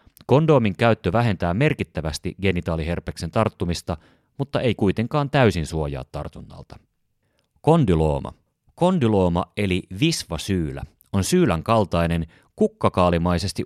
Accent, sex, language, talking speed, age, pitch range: native, male, Finnish, 90 wpm, 30-49, 85-115 Hz